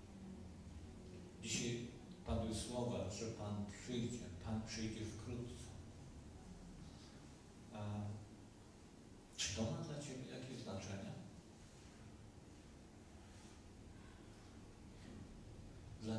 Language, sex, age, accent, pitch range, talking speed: Polish, male, 50-69, native, 100-110 Hz, 65 wpm